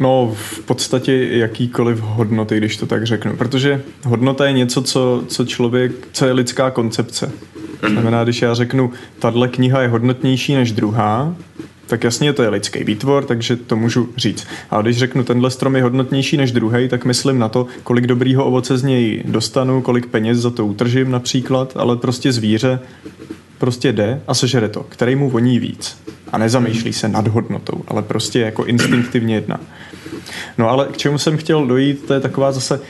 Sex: male